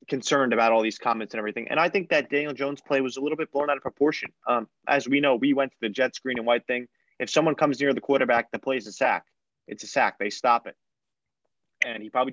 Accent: American